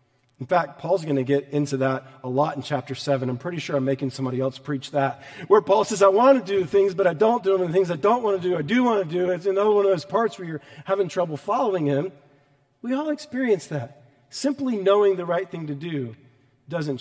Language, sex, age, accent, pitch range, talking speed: English, male, 40-59, American, 125-170 Hz, 255 wpm